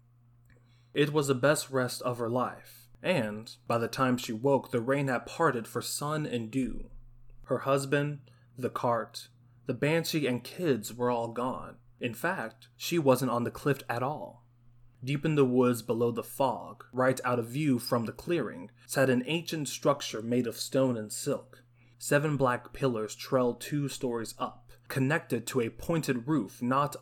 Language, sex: English, male